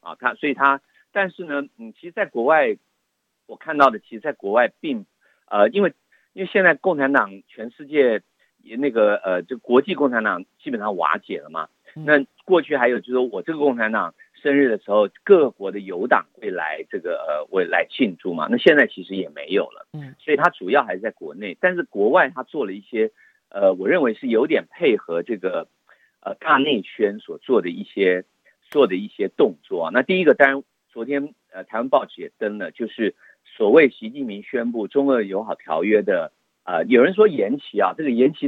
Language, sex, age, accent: Chinese, male, 50-69, native